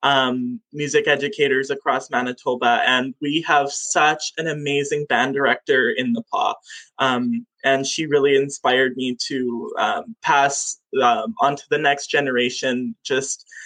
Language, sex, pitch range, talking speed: English, male, 140-225 Hz, 140 wpm